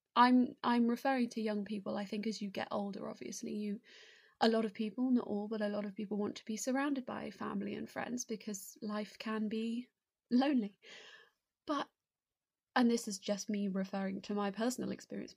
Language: English